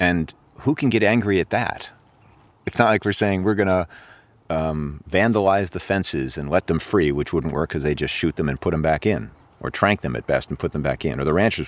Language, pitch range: English, 80-105 Hz